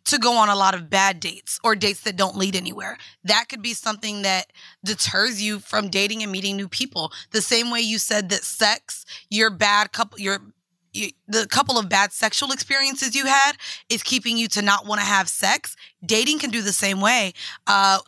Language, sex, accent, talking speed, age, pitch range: English, female, American, 210 wpm, 20-39, 200-240 Hz